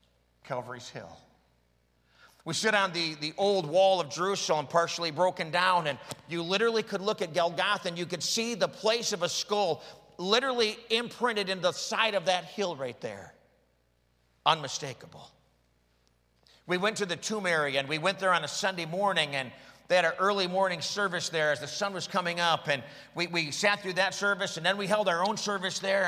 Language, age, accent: English, 50-69, American